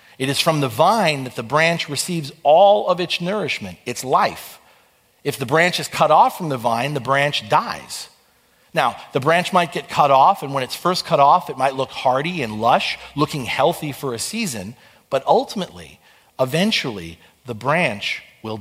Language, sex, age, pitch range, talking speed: English, male, 40-59, 130-175 Hz, 185 wpm